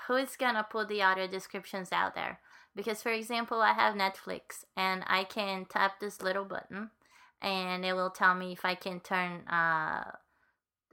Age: 20-39